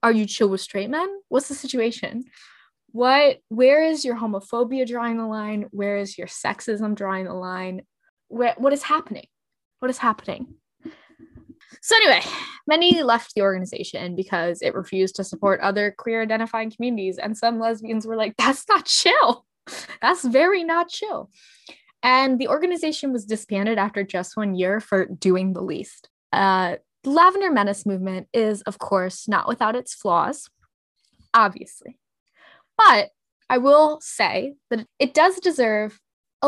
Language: English